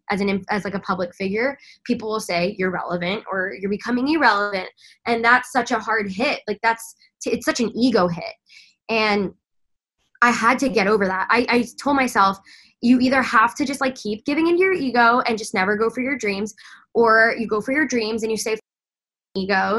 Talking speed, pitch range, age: 205 wpm, 195-240 Hz, 10-29